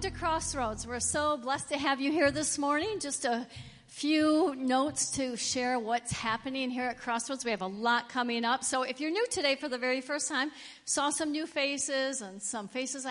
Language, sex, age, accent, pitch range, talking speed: English, female, 50-69, American, 235-290 Hz, 205 wpm